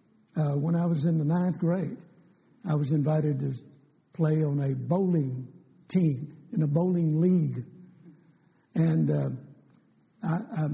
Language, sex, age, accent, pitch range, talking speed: English, male, 60-79, American, 150-195 Hz, 130 wpm